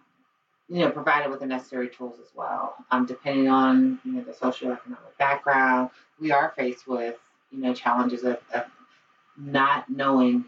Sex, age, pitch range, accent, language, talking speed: female, 30-49, 130-170 Hz, American, English, 165 wpm